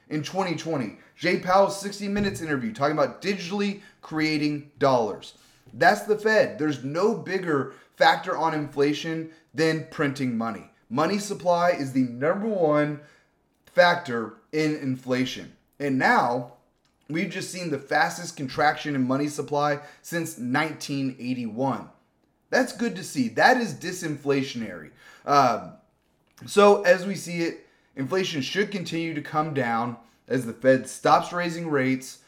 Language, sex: English, male